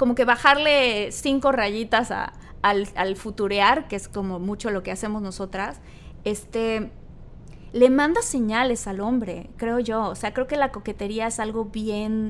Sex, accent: female, Mexican